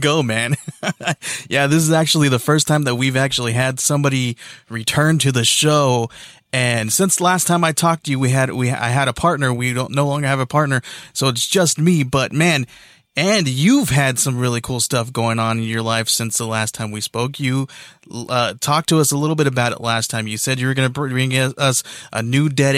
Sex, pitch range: male, 120-150 Hz